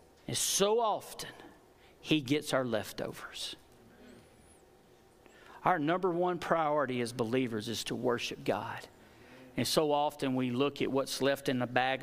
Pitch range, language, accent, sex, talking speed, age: 145-210 Hz, English, American, male, 140 wpm, 50-69